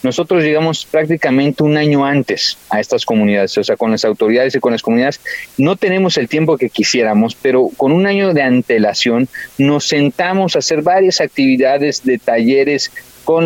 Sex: male